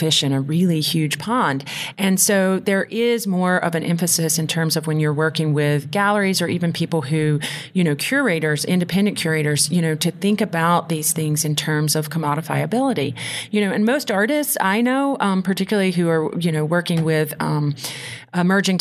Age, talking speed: 30-49, 190 wpm